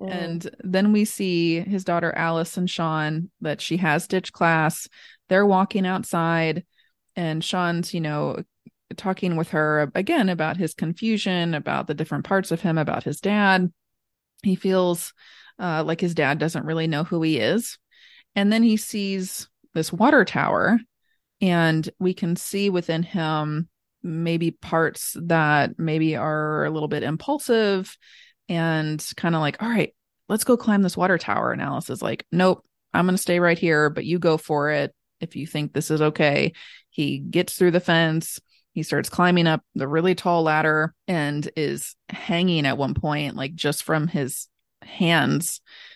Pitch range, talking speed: 155-190 Hz, 170 wpm